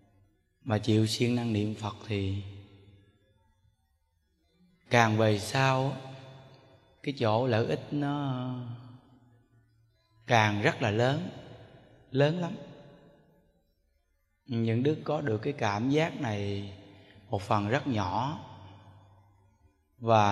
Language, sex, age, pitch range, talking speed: Vietnamese, male, 20-39, 100-130 Hz, 100 wpm